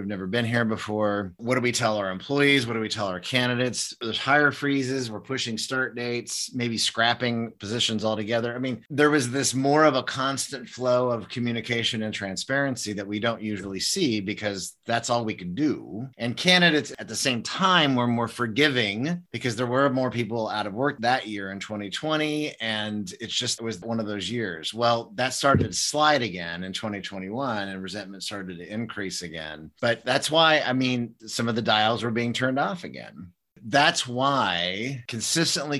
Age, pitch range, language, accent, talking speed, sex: 30-49, 110-130 Hz, English, American, 195 wpm, male